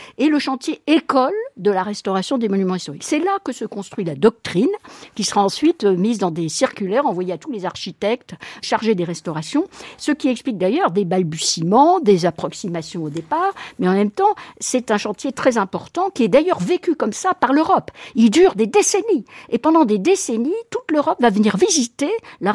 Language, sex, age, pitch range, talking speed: French, female, 60-79, 185-280 Hz, 195 wpm